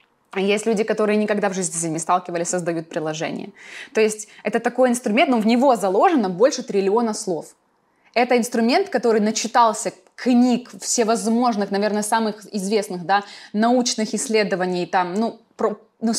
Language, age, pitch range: Russian, 20-39, 185-230 Hz